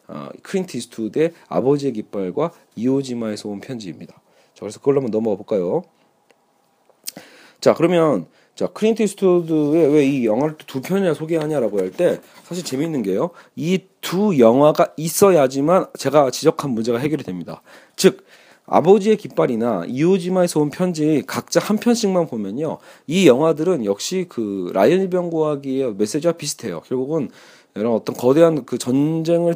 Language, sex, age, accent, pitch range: Korean, male, 40-59, native, 130-175 Hz